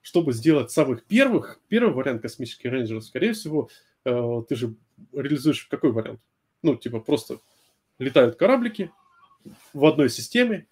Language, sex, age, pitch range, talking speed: Russian, male, 20-39, 120-170 Hz, 130 wpm